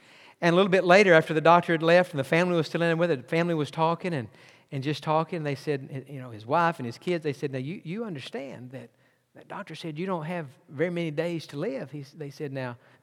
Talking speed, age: 270 wpm, 50-69